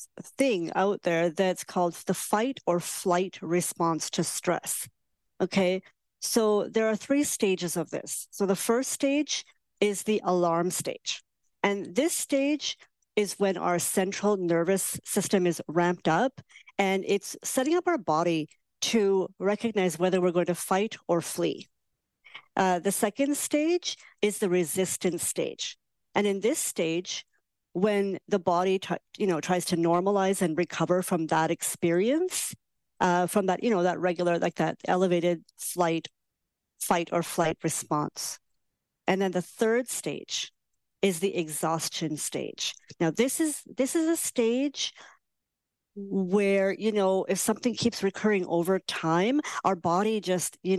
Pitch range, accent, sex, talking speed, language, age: 170-205 Hz, American, female, 145 wpm, English, 50-69